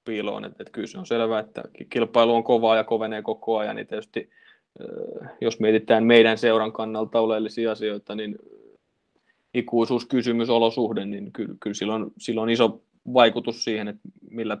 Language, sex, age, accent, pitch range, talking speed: Finnish, male, 20-39, native, 110-120 Hz, 155 wpm